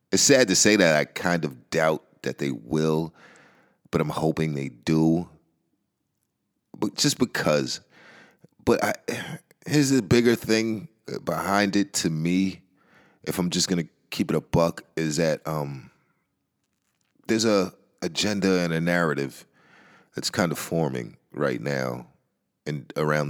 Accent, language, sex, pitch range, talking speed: American, English, male, 75-95 Hz, 135 wpm